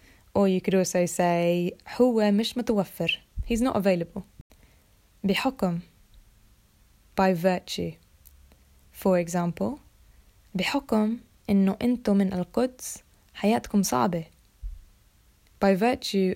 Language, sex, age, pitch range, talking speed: Arabic, female, 20-39, 170-200 Hz, 90 wpm